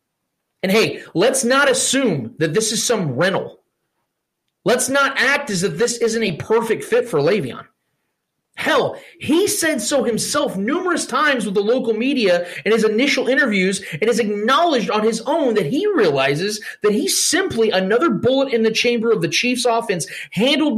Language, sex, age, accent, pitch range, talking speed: English, male, 30-49, American, 195-260 Hz, 170 wpm